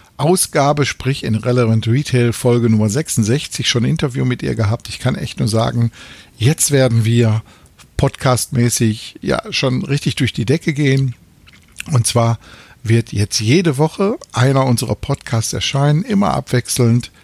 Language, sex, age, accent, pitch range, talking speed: German, male, 60-79, German, 110-130 Hz, 145 wpm